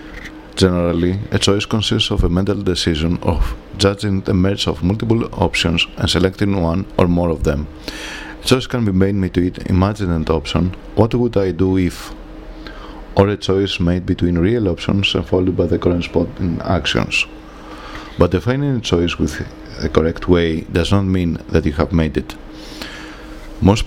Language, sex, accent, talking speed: English, male, Spanish, 165 wpm